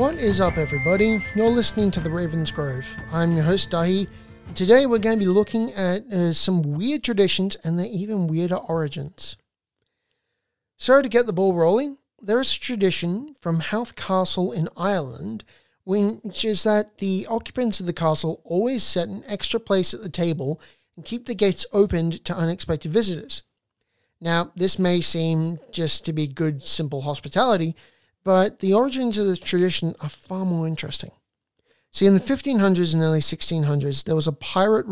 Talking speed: 175 wpm